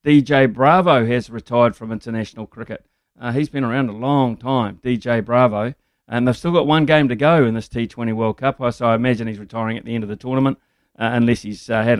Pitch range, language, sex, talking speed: 120-145 Hz, English, male, 225 wpm